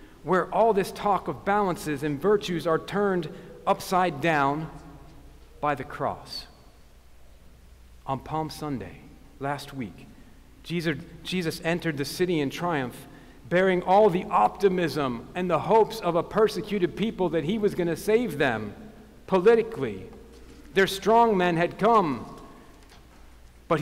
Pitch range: 130-185 Hz